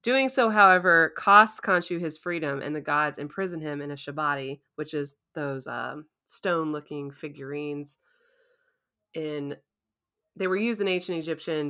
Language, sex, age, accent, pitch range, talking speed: English, female, 20-39, American, 150-195 Hz, 145 wpm